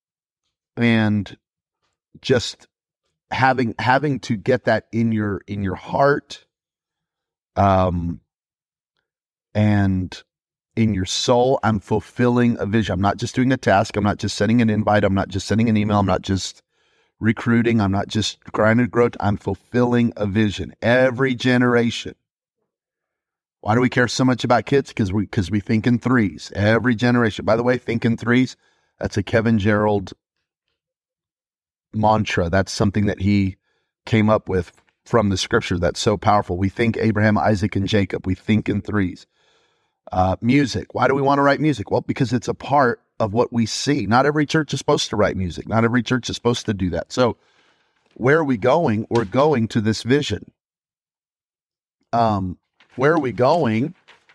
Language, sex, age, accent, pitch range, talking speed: English, male, 40-59, American, 100-120 Hz, 170 wpm